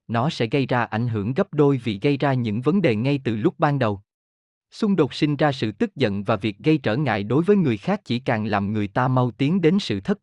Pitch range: 115-170 Hz